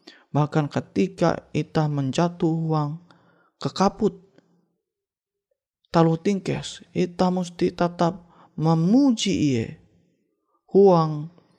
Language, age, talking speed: Indonesian, 30-49, 70 wpm